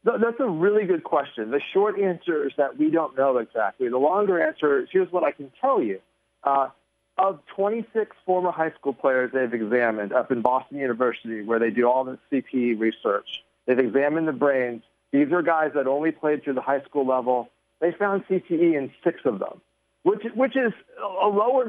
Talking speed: 195 wpm